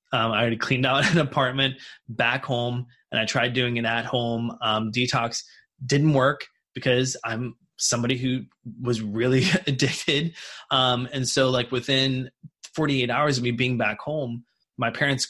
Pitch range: 120-145 Hz